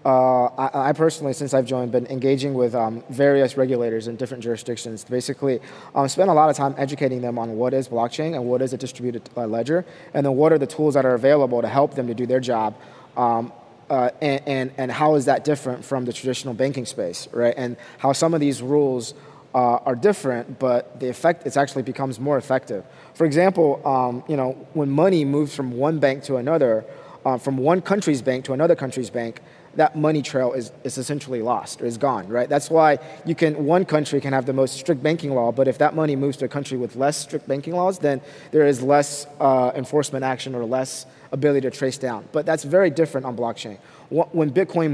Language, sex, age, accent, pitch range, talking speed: English, male, 30-49, American, 130-150 Hz, 220 wpm